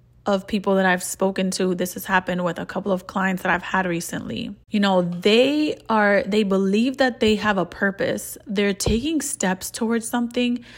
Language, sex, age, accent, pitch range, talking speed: English, female, 20-39, American, 185-225 Hz, 190 wpm